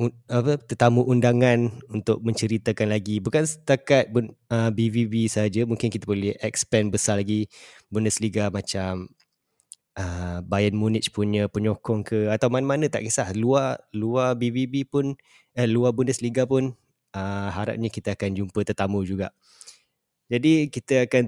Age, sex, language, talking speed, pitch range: 20-39, male, Malay, 125 wpm, 110-125 Hz